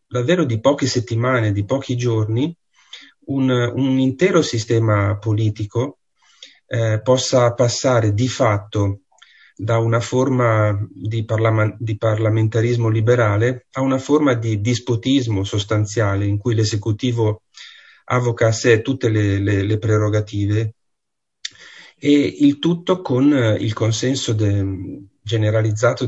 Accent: native